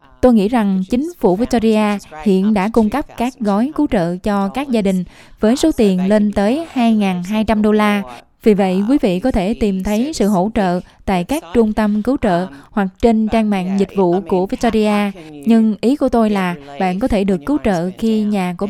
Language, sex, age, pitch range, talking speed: Vietnamese, female, 20-39, 195-235 Hz, 210 wpm